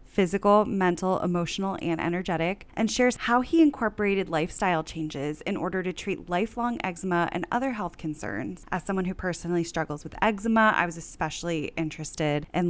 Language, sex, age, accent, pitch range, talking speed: English, female, 10-29, American, 170-210 Hz, 160 wpm